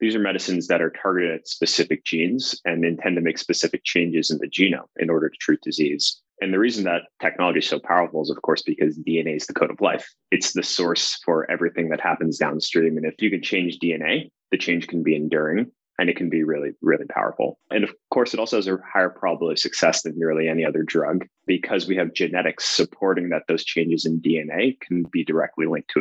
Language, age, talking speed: English, 20-39, 225 wpm